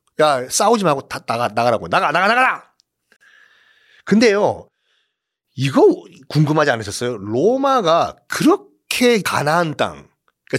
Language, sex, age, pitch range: Korean, male, 40-59, 135-210 Hz